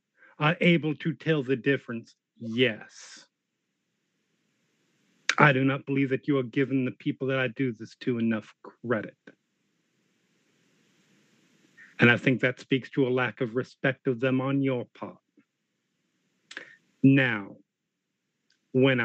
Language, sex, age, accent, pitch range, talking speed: English, male, 50-69, American, 130-165 Hz, 130 wpm